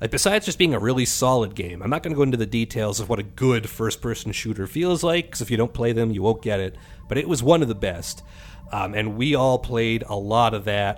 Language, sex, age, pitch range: English, male, 30-49, 105-135 Hz